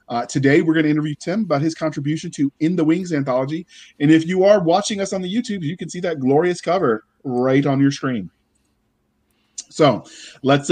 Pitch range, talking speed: 120-150 Hz, 200 wpm